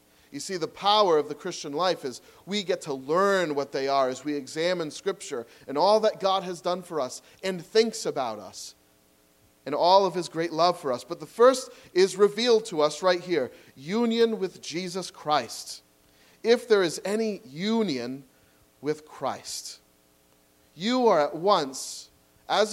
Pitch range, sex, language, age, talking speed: 120-195 Hz, male, English, 40-59, 170 wpm